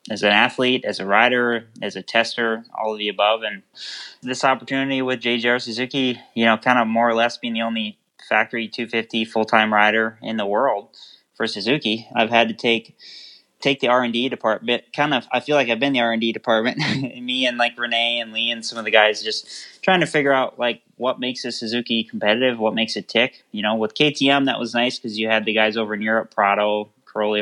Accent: American